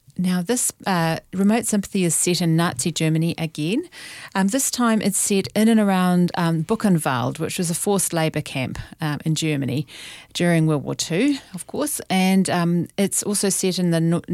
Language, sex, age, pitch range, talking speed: English, female, 40-59, 155-200 Hz, 185 wpm